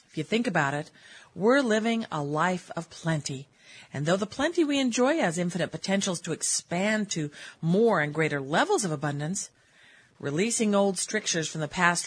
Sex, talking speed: female, 170 wpm